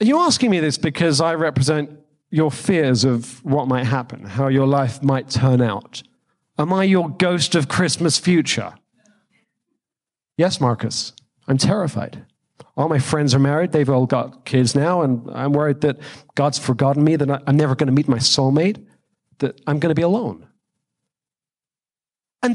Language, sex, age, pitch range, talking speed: English, male, 40-59, 135-195 Hz, 170 wpm